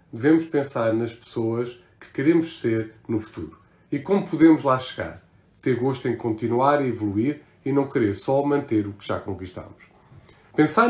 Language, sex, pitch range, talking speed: Portuguese, male, 115-150 Hz, 165 wpm